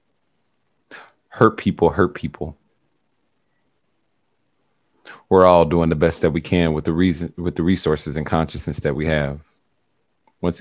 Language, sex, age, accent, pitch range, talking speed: English, male, 30-49, American, 75-85 Hz, 135 wpm